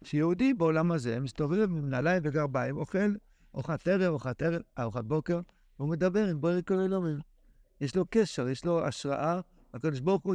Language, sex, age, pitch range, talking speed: Hebrew, male, 60-79, 150-195 Hz, 160 wpm